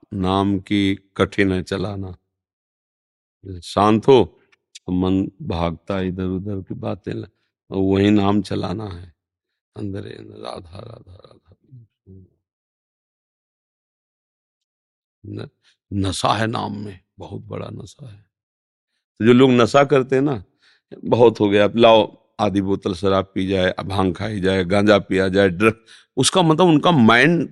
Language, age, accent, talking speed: Hindi, 50-69, native, 120 wpm